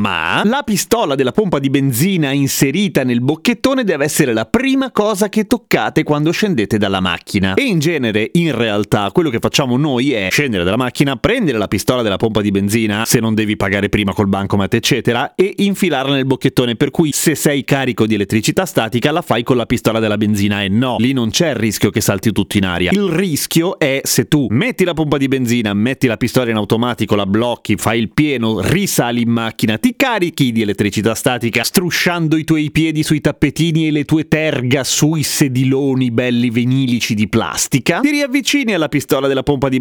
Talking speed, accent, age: 195 wpm, native, 30-49